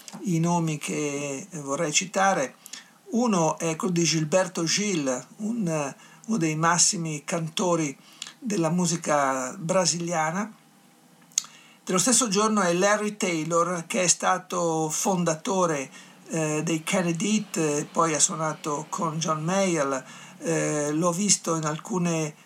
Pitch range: 160-195 Hz